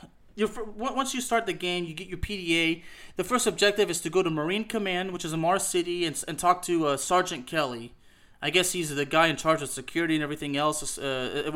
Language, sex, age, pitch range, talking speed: English, male, 20-39, 145-185 Hz, 230 wpm